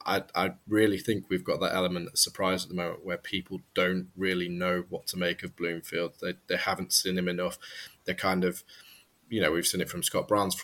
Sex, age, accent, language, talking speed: male, 20-39, British, English, 225 wpm